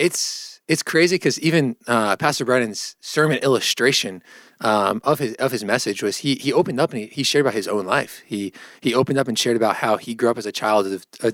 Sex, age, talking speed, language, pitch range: male, 20-39, 240 wpm, English, 105-130 Hz